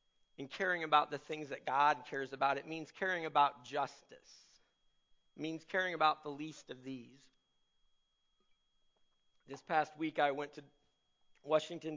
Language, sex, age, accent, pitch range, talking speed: English, male, 50-69, American, 135-155 Hz, 145 wpm